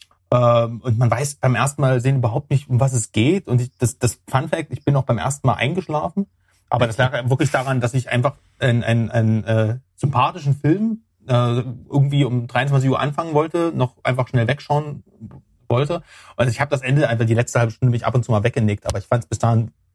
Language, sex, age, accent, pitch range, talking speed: German, male, 30-49, German, 115-130 Hz, 225 wpm